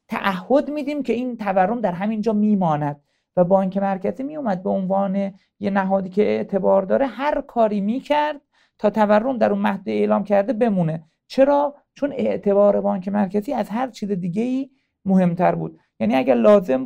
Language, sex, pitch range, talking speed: Persian, male, 190-255 Hz, 160 wpm